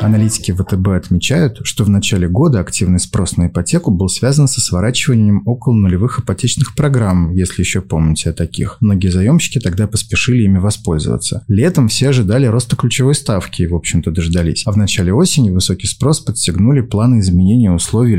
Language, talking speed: Russian, 165 wpm